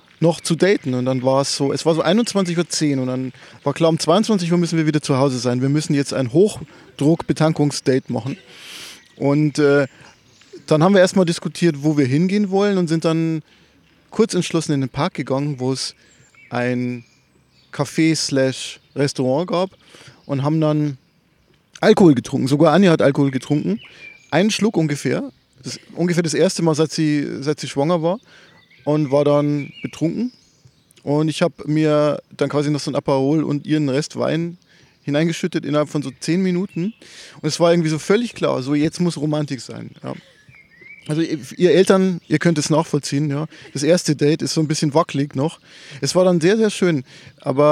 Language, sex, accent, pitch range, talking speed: German, male, German, 140-170 Hz, 180 wpm